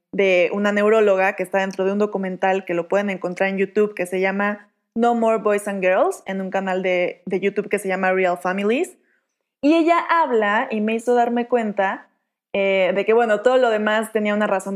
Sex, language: female, Spanish